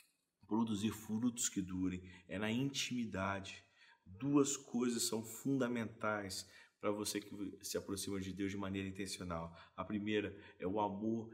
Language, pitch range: Portuguese, 100-115 Hz